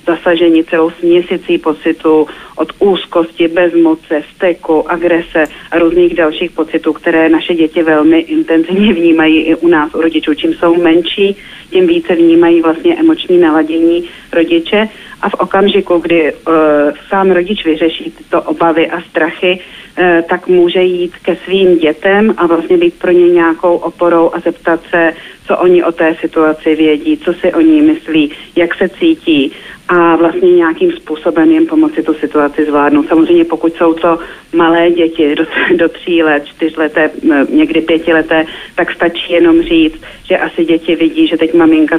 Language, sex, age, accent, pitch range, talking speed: Czech, female, 40-59, native, 160-180 Hz, 155 wpm